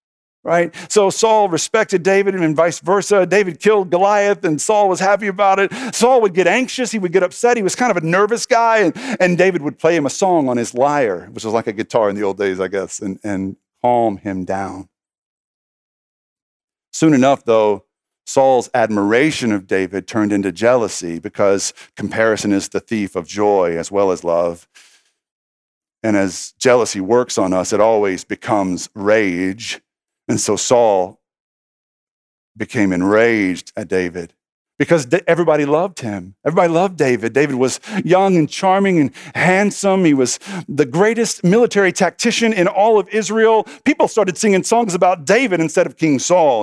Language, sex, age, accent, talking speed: English, male, 50-69, American, 170 wpm